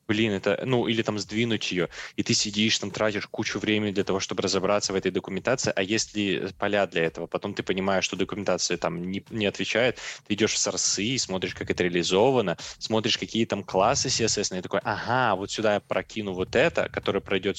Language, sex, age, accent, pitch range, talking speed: Russian, male, 20-39, native, 95-115 Hz, 205 wpm